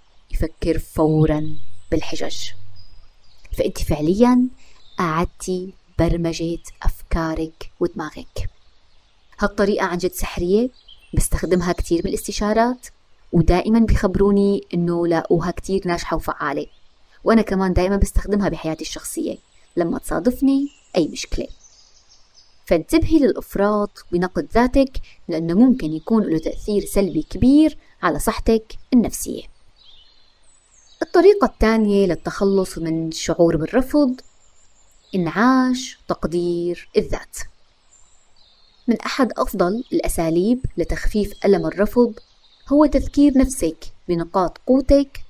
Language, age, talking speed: Arabic, 20-39, 90 wpm